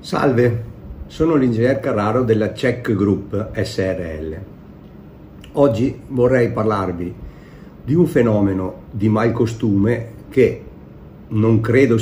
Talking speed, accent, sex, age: 95 wpm, native, male, 50-69